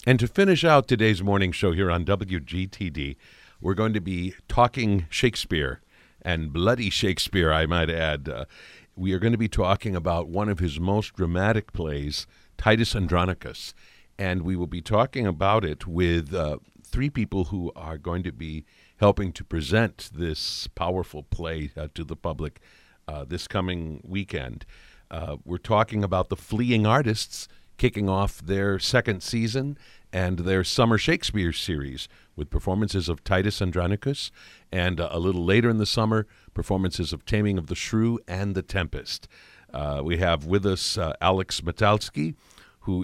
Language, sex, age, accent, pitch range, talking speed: English, male, 50-69, American, 85-105 Hz, 160 wpm